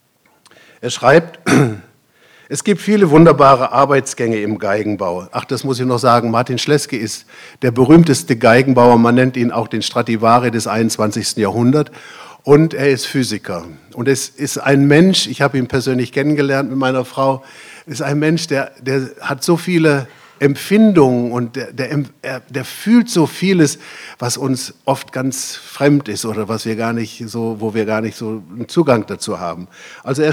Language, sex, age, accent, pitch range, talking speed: German, male, 50-69, German, 120-145 Hz, 170 wpm